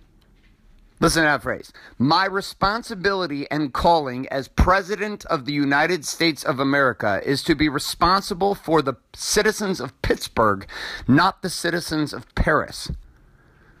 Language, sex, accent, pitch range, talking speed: English, male, American, 140-180 Hz, 130 wpm